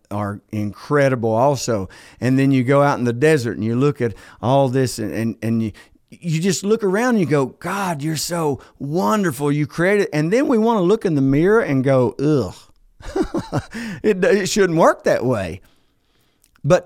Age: 50-69